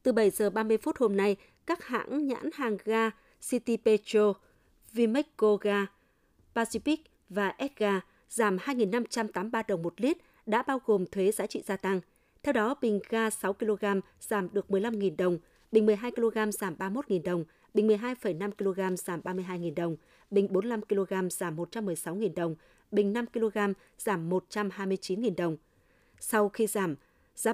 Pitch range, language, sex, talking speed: 185-225 Hz, Vietnamese, female, 140 wpm